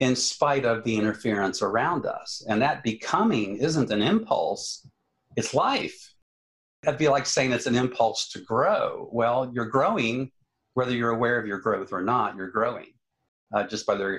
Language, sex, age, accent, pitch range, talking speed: English, male, 50-69, American, 105-125 Hz, 180 wpm